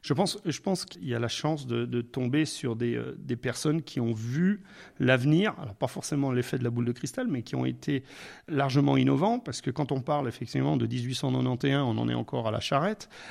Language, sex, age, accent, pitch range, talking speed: French, male, 40-59, French, 130-155 Hz, 230 wpm